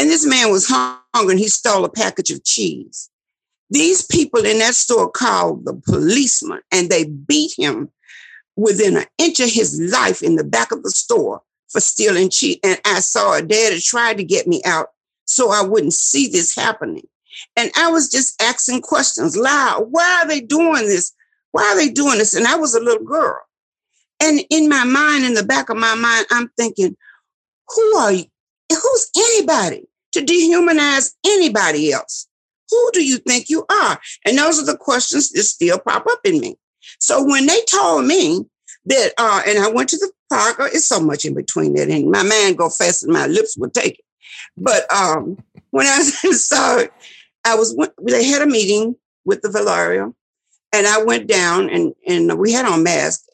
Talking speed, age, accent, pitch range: 195 wpm, 50-69, American, 220-365 Hz